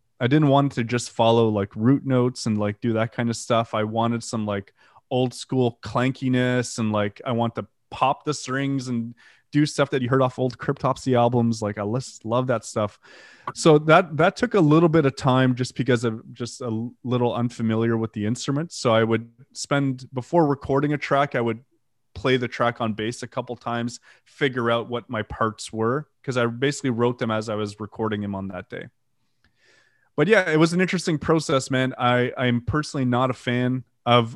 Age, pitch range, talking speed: 20-39, 115-135 Hz, 205 wpm